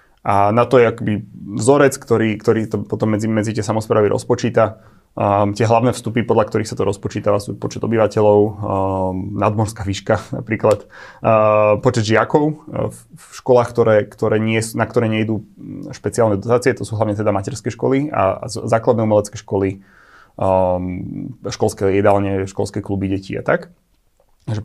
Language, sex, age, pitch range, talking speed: Slovak, male, 30-49, 105-120 Hz, 160 wpm